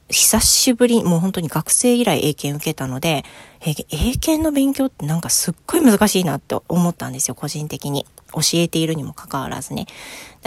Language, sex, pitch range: Japanese, female, 150-225 Hz